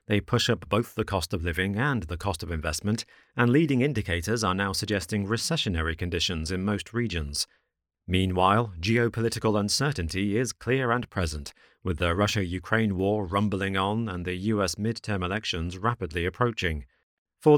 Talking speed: 155 wpm